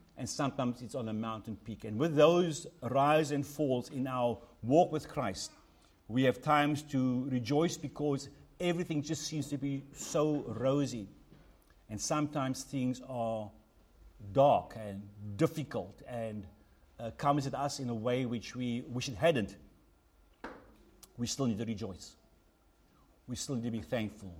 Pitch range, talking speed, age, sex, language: 115-150 Hz, 150 wpm, 60-79, male, English